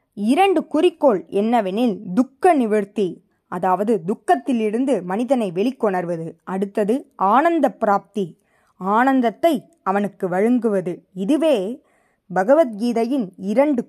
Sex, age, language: female, 20-39, Tamil